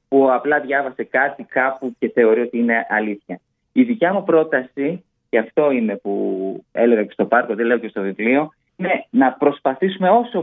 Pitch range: 120-180 Hz